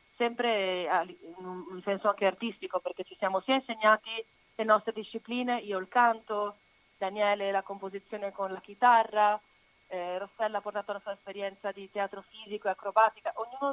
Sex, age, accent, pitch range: female, 30-49, native, 190-225 Hz